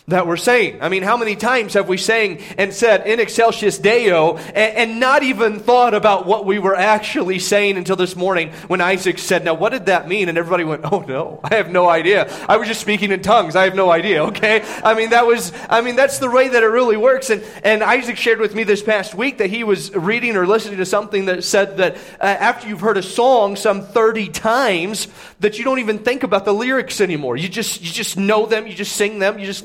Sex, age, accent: male, 30-49, American